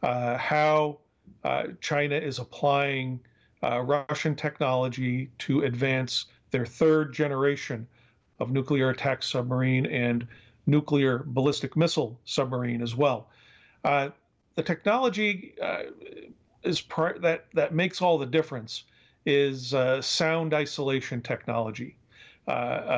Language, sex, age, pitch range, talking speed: English, male, 50-69, 125-150 Hz, 110 wpm